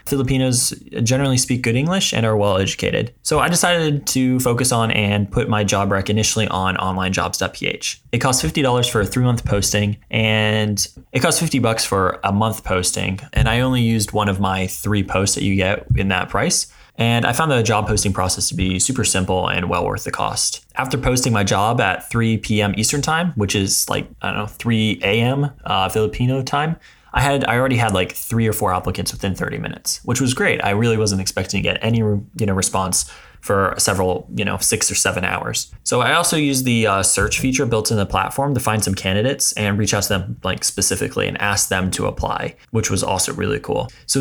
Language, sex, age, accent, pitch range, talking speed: English, male, 20-39, American, 95-125 Hz, 215 wpm